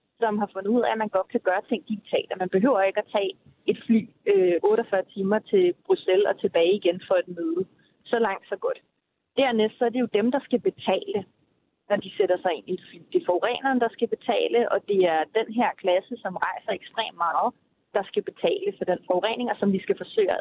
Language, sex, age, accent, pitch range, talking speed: Danish, female, 30-49, native, 185-235 Hz, 230 wpm